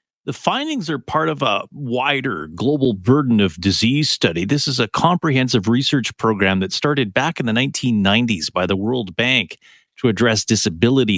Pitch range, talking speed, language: 115-160 Hz, 165 wpm, English